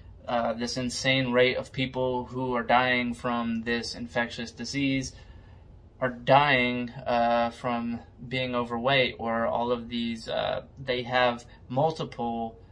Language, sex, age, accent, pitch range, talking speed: English, male, 20-39, American, 110-130 Hz, 125 wpm